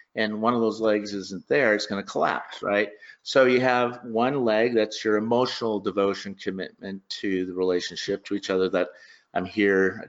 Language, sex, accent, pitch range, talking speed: English, male, American, 95-110 Hz, 185 wpm